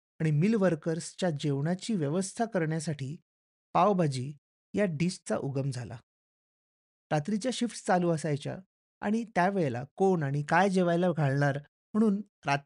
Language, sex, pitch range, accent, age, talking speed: Marathi, male, 150-200 Hz, native, 30-49, 85 wpm